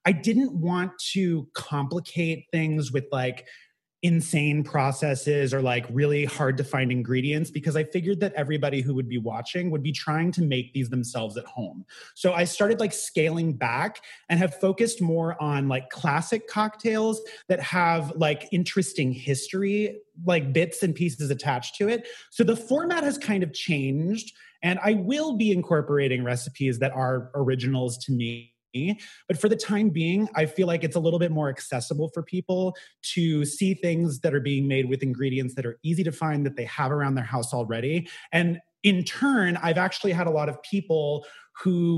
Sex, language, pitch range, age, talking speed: male, English, 140-180 Hz, 30-49, 180 wpm